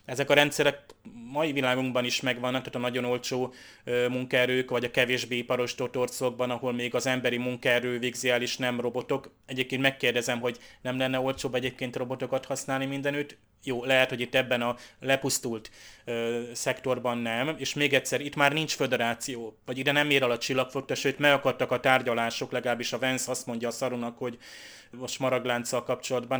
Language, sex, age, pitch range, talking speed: Hungarian, male, 20-39, 125-140 Hz, 165 wpm